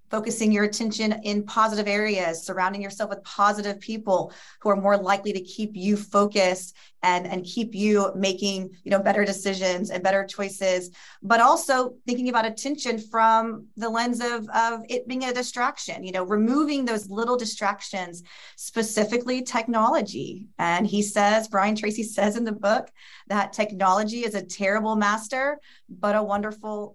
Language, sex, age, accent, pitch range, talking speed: English, female, 30-49, American, 195-235 Hz, 160 wpm